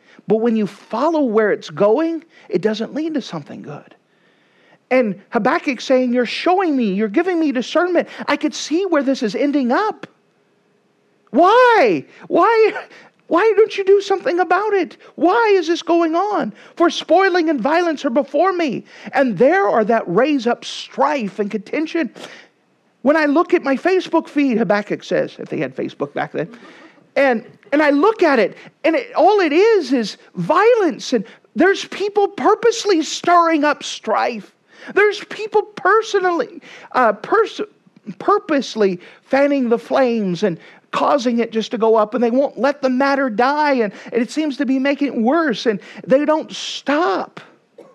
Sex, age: male, 40-59